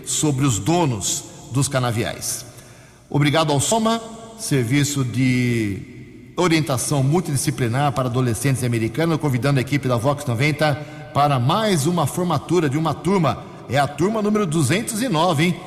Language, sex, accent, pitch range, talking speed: English, male, Brazilian, 125-155 Hz, 125 wpm